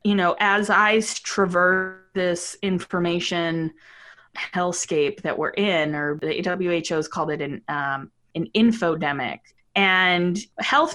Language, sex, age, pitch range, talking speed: English, female, 20-39, 165-210 Hz, 120 wpm